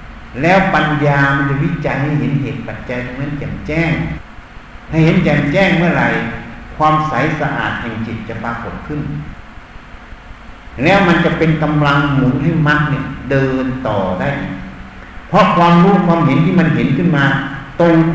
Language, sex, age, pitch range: Thai, male, 60-79, 130-160 Hz